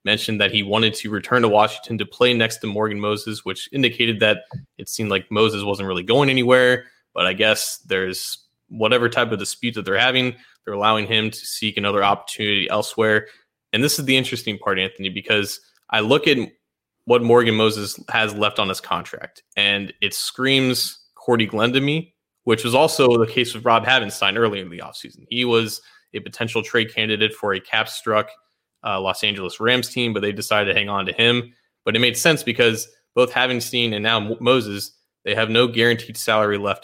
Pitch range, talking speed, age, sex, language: 105-120 Hz, 195 wpm, 20-39, male, English